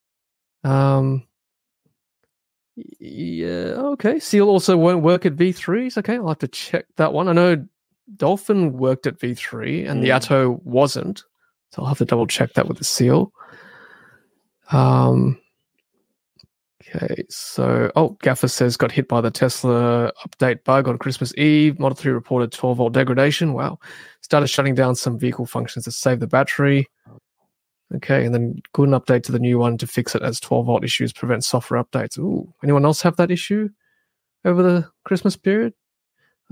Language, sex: English, male